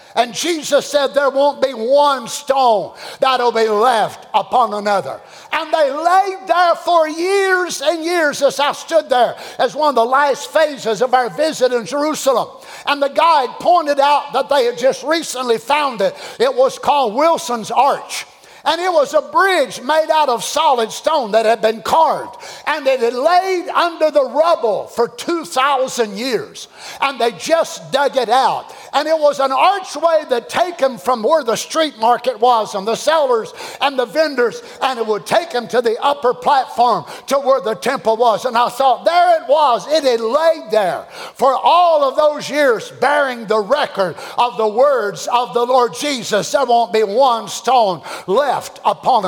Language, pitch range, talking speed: English, 245-330 Hz, 180 wpm